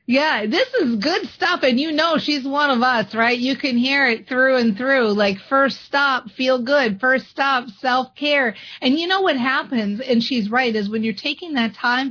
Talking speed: 210 wpm